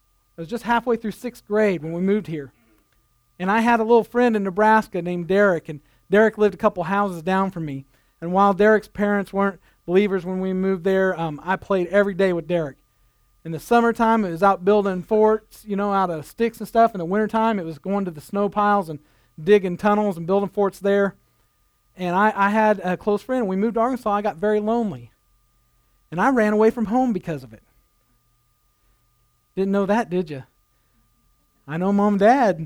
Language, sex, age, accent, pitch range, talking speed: English, male, 40-59, American, 160-205 Hz, 210 wpm